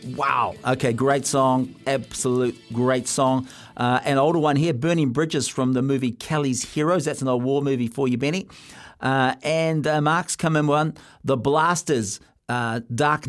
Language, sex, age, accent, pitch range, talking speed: English, male, 50-69, Australian, 125-150 Hz, 170 wpm